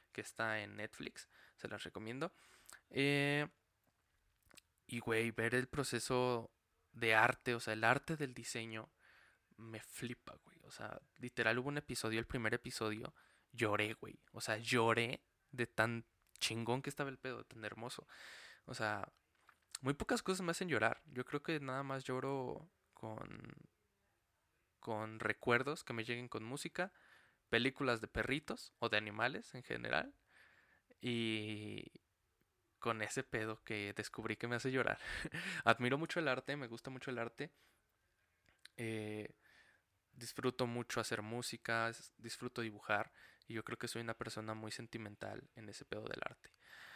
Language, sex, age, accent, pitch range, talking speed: Spanish, male, 20-39, Mexican, 110-130 Hz, 150 wpm